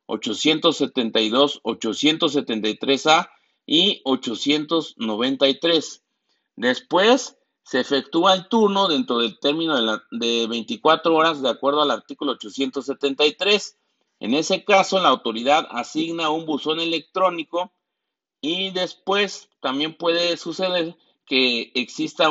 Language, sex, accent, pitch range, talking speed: Spanish, male, Mexican, 135-190 Hz, 100 wpm